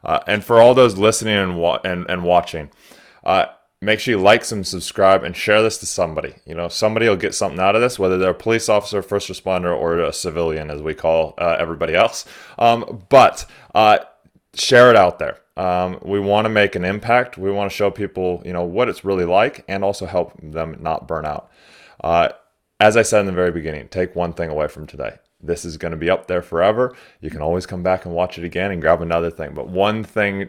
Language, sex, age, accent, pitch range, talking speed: English, male, 20-39, American, 85-100 Hz, 230 wpm